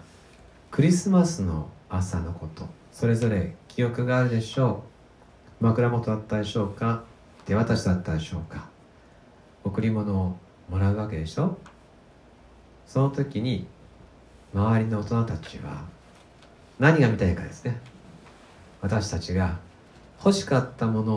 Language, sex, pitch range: Japanese, male, 95-130 Hz